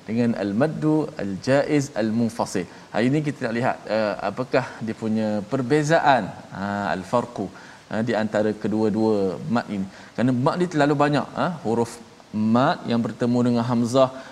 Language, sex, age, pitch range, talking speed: Malayalam, male, 20-39, 115-145 Hz, 125 wpm